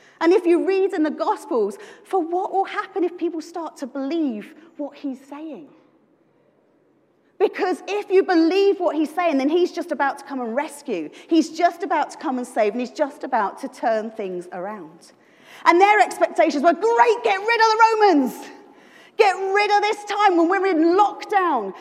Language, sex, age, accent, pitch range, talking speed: English, female, 30-49, British, 290-390 Hz, 185 wpm